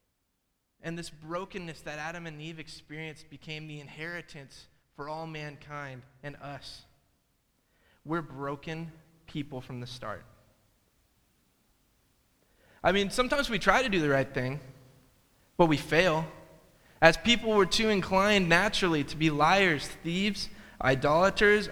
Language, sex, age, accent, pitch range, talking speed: English, male, 20-39, American, 145-190 Hz, 125 wpm